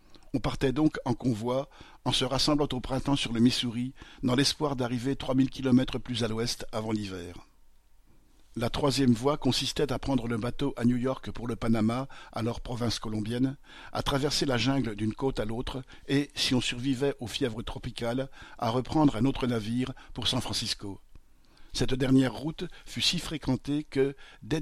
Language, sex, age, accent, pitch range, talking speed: French, male, 50-69, French, 120-135 Hz, 175 wpm